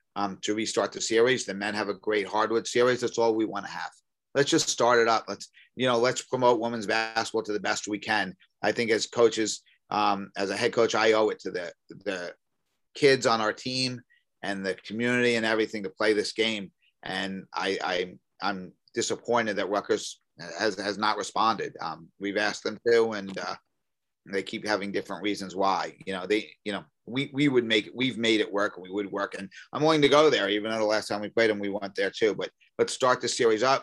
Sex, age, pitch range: male, 30-49, 100-120 Hz